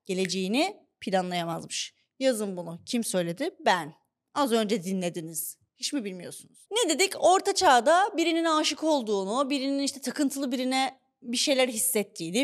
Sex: female